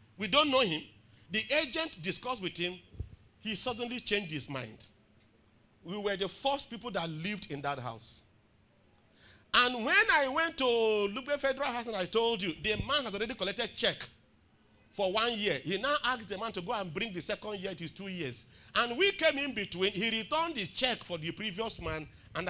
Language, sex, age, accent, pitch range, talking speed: English, male, 40-59, Nigerian, 155-250 Hz, 205 wpm